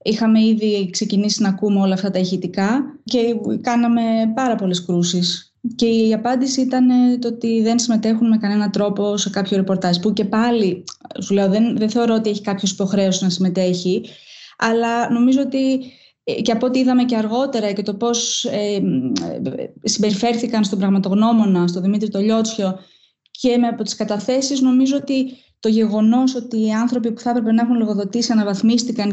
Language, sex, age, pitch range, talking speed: Greek, female, 20-39, 200-235 Hz, 165 wpm